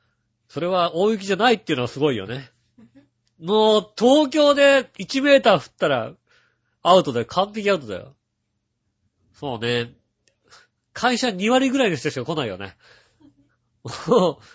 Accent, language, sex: native, Japanese, male